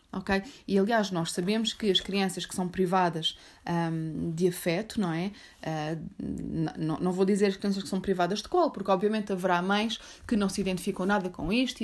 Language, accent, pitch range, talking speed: Portuguese, Brazilian, 180-220 Hz, 175 wpm